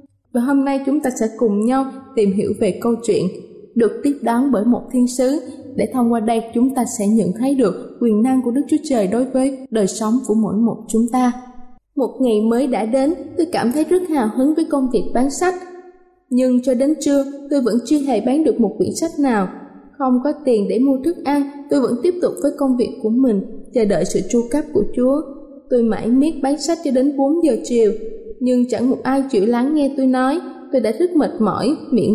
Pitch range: 230-280 Hz